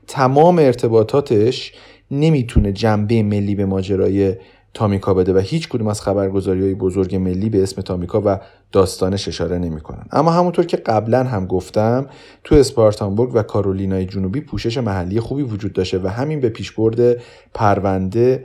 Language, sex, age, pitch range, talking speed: Persian, male, 30-49, 100-130 Hz, 145 wpm